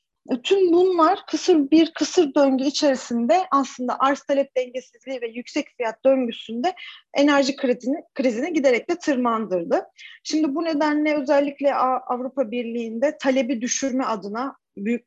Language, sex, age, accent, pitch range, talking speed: Turkish, female, 40-59, native, 210-275 Hz, 120 wpm